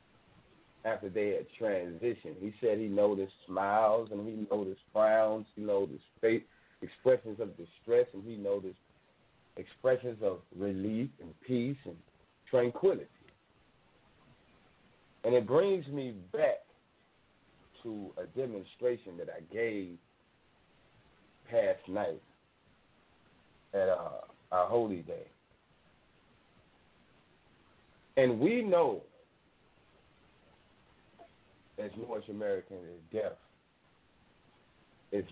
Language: English